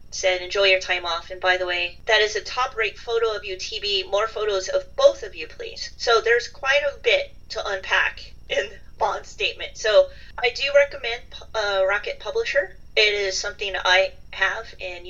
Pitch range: 190-275 Hz